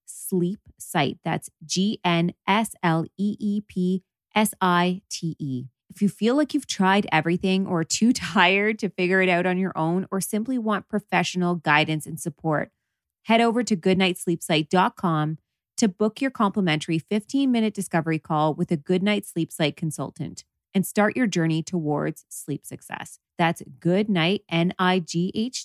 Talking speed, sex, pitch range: 165 wpm, female, 160-200 Hz